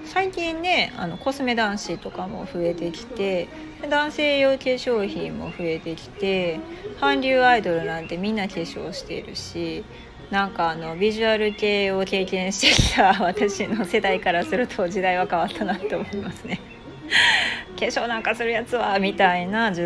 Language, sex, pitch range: Japanese, female, 180-270 Hz